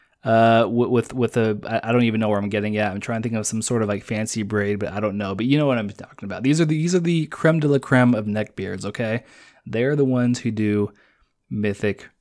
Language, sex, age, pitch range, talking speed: English, male, 20-39, 105-125 Hz, 260 wpm